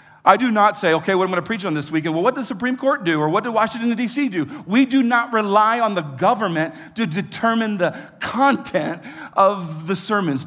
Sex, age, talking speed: male, 40-59, 225 wpm